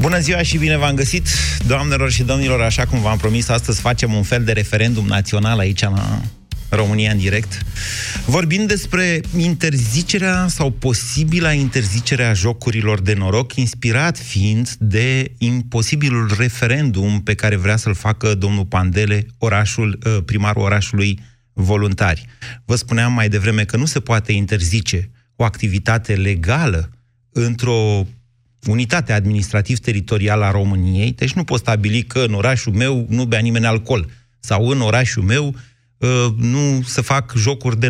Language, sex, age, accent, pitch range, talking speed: Romanian, male, 30-49, native, 105-130 Hz, 140 wpm